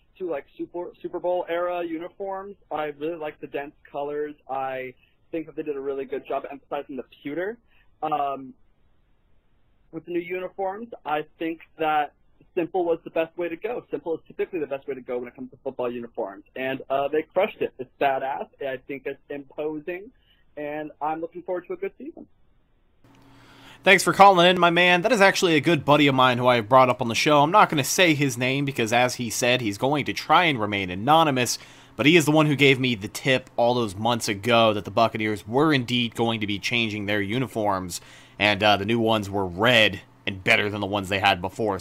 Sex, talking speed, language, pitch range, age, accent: male, 220 wpm, English, 120-165 Hz, 20-39, American